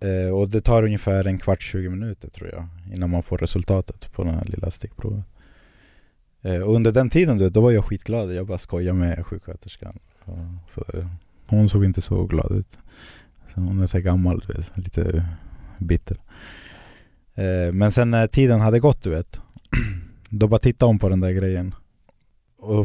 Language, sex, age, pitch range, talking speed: Swedish, male, 20-39, 90-105 Hz, 170 wpm